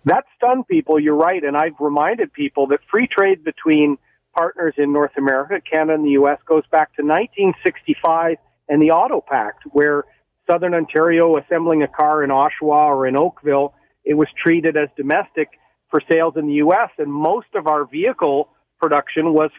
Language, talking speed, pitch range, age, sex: English, 175 wpm, 150-180 Hz, 50-69, male